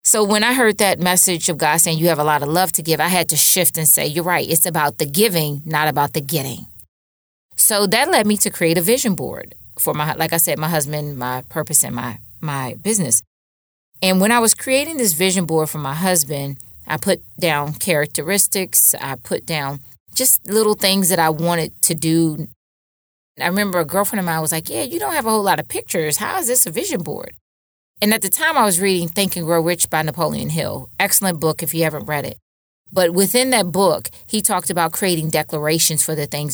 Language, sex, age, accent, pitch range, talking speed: English, female, 20-39, American, 150-195 Hz, 225 wpm